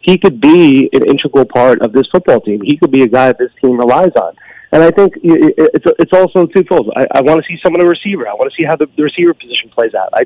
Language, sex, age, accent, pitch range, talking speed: English, male, 30-49, American, 130-180 Hz, 265 wpm